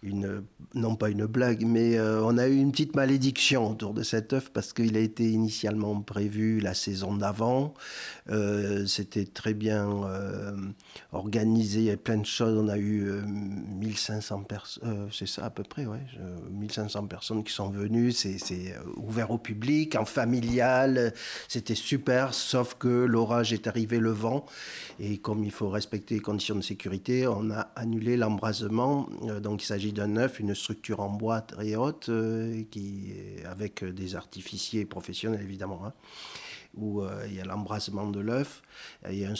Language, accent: French, French